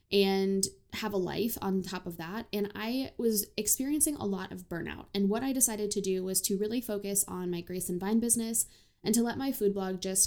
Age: 10-29